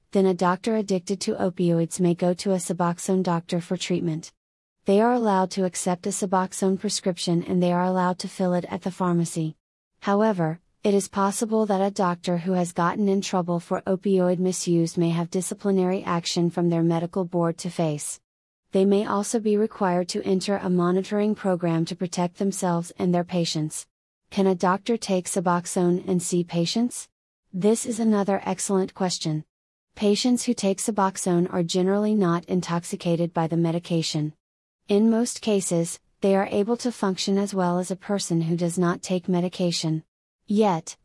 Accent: American